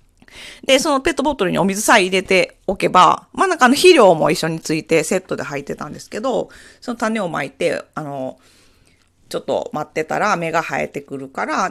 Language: Japanese